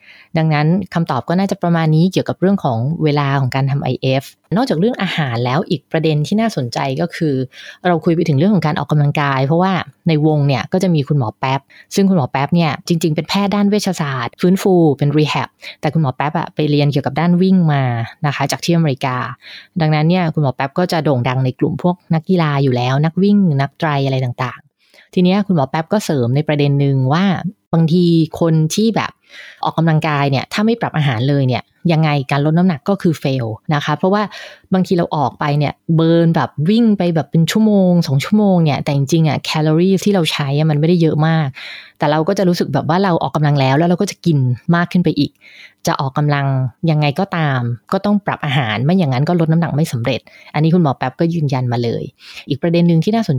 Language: English